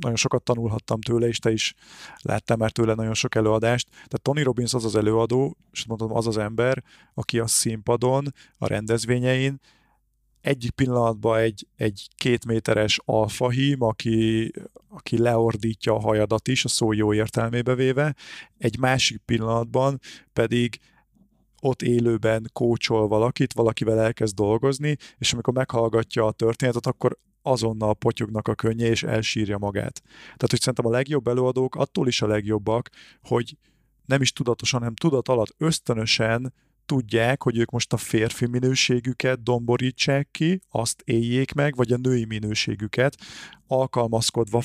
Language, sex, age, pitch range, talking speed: Hungarian, male, 30-49, 110-130 Hz, 140 wpm